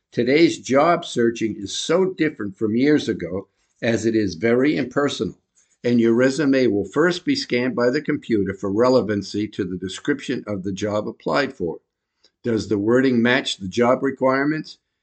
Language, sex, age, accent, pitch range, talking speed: English, male, 50-69, American, 105-130 Hz, 165 wpm